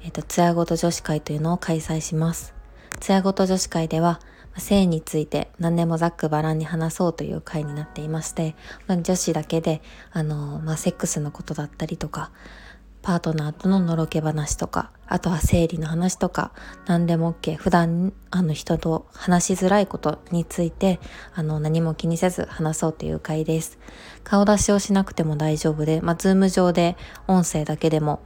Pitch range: 155-175 Hz